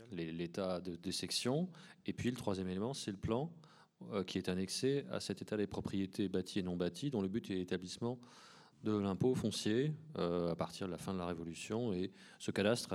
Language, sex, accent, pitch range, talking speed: French, male, French, 95-115 Hz, 205 wpm